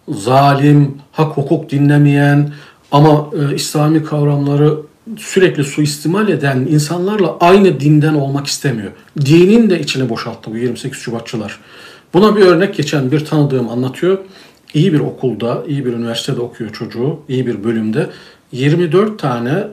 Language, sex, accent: Turkish, male, native